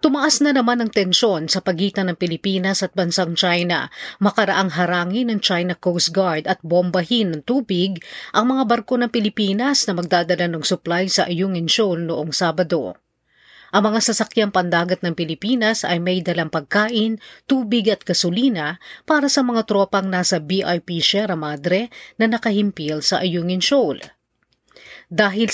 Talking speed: 150 wpm